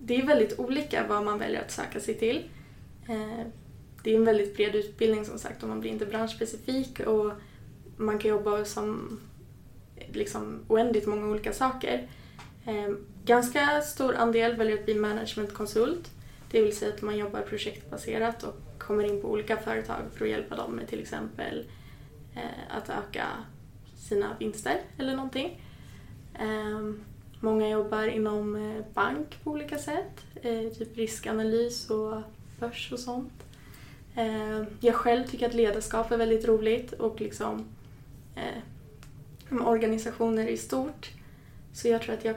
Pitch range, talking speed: 210-230 Hz, 135 wpm